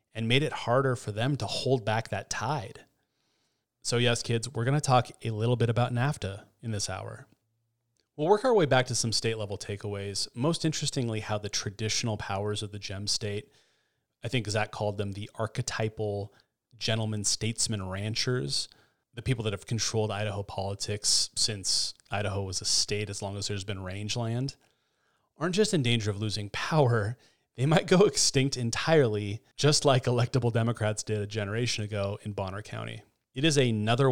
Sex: male